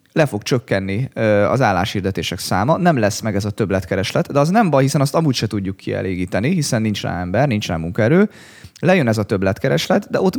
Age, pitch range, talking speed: 30-49, 100-135 Hz, 200 wpm